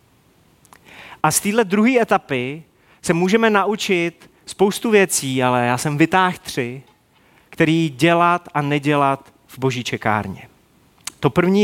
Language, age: Czech, 30-49